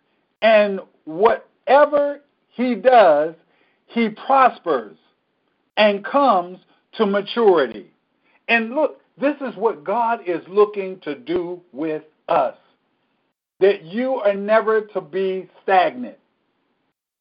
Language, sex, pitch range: English, male, 190-255 Hz